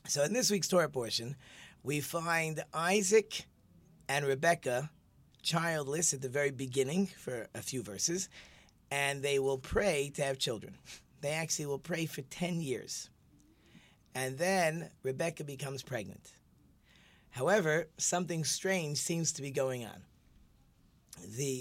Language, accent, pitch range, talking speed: English, American, 135-170 Hz, 135 wpm